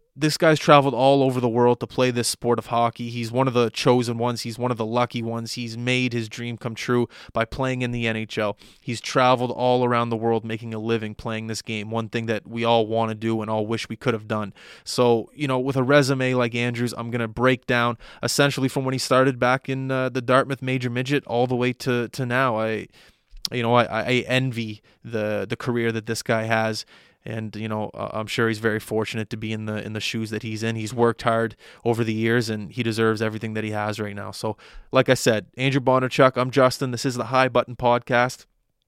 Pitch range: 110-130 Hz